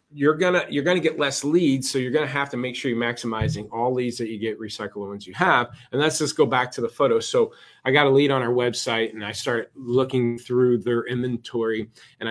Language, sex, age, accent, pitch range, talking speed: English, male, 30-49, American, 115-145 Hz, 240 wpm